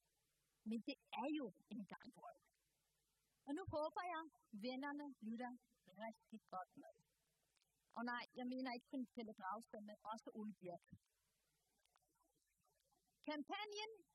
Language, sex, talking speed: Danish, female, 125 wpm